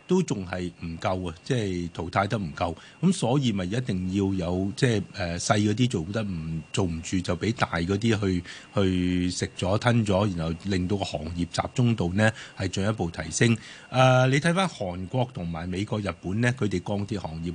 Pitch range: 95-125 Hz